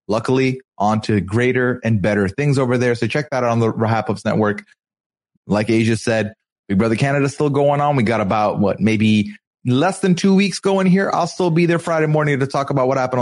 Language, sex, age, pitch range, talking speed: English, male, 30-49, 110-150 Hz, 220 wpm